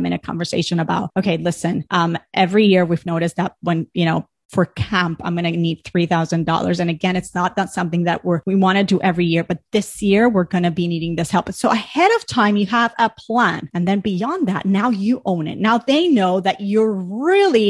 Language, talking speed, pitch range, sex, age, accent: English, 230 wpm, 175-235 Hz, female, 30-49, American